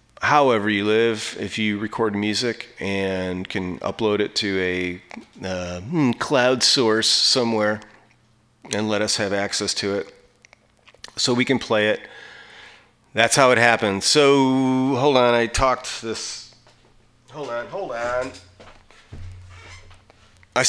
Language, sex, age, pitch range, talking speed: English, male, 40-59, 95-125 Hz, 130 wpm